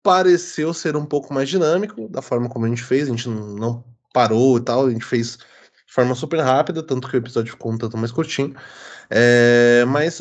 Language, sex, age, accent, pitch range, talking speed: Portuguese, male, 20-39, Brazilian, 120-170 Hz, 210 wpm